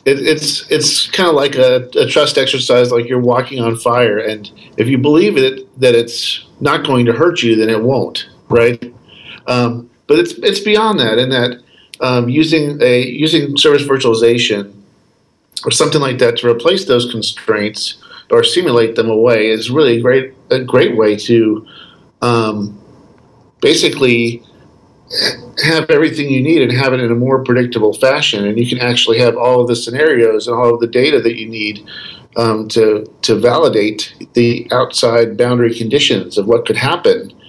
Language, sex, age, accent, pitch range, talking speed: English, male, 50-69, American, 115-140 Hz, 175 wpm